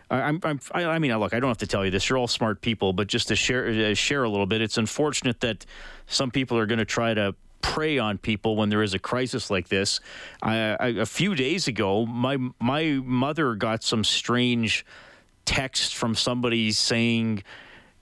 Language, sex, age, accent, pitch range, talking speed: English, male, 40-59, American, 100-120 Hz, 200 wpm